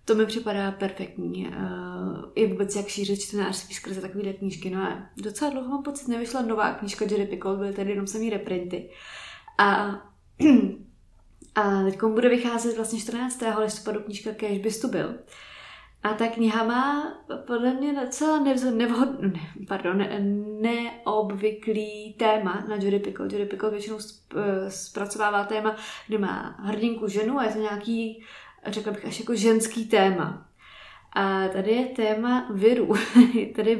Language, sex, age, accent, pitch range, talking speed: Czech, female, 20-39, native, 195-225 Hz, 155 wpm